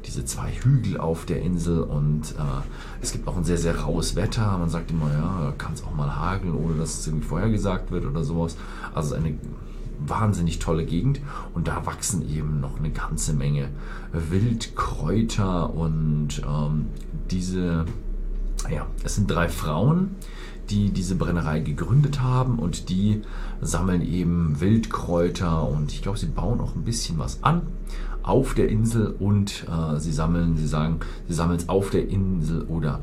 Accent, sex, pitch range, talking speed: German, male, 75-105 Hz, 165 wpm